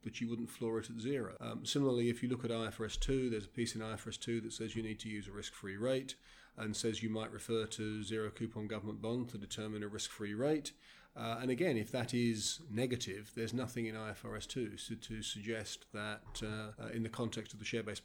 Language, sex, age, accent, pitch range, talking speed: English, male, 40-59, British, 110-125 Hz, 225 wpm